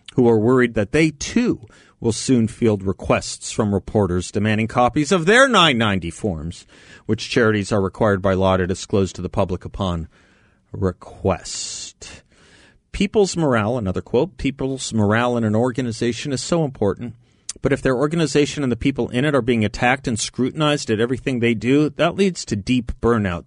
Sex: male